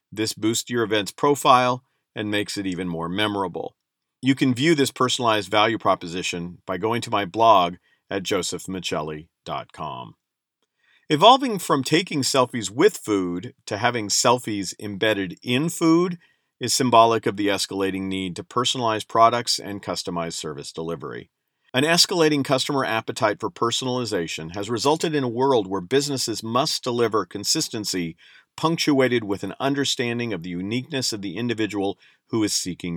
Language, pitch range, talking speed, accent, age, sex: English, 95-130 Hz, 145 wpm, American, 50-69, male